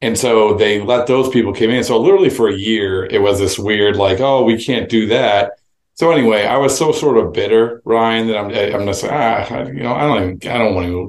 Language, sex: English, male